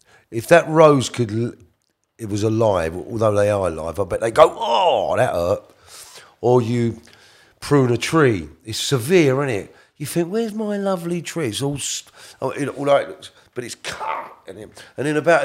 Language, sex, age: English, male, 40-59